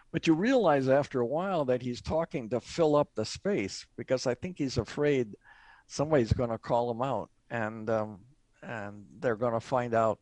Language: English